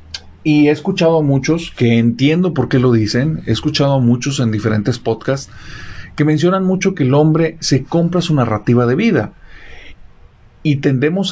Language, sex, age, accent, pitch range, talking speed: Spanish, male, 40-59, Mexican, 115-155 Hz, 170 wpm